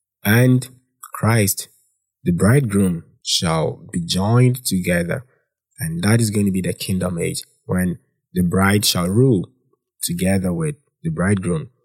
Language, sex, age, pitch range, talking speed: English, male, 20-39, 90-125 Hz, 130 wpm